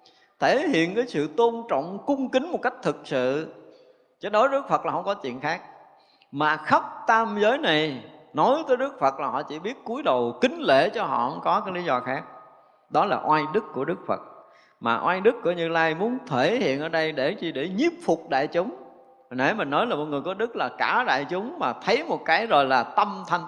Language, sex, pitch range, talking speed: Vietnamese, male, 155-250 Hz, 235 wpm